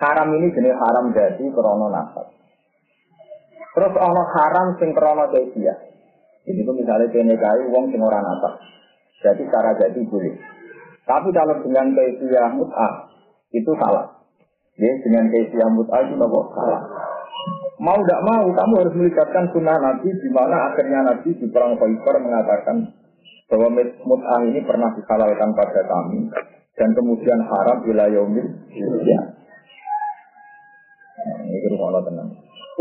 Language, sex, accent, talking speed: Indonesian, male, native, 125 wpm